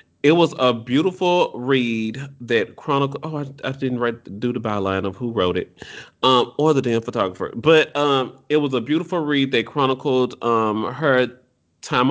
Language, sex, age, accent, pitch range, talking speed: English, male, 30-49, American, 115-145 Hz, 185 wpm